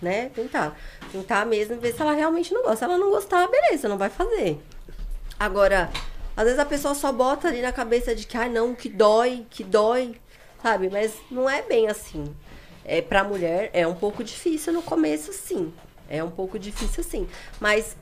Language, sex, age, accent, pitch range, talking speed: Portuguese, female, 20-39, Brazilian, 170-225 Hz, 195 wpm